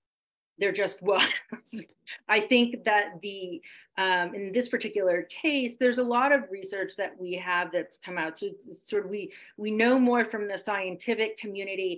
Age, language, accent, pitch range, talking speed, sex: 40-59, English, American, 175-225 Hz, 180 wpm, female